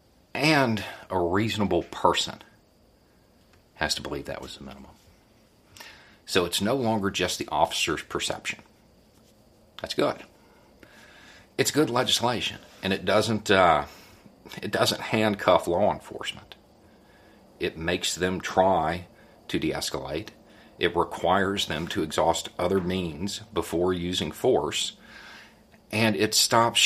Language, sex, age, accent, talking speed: English, male, 50-69, American, 115 wpm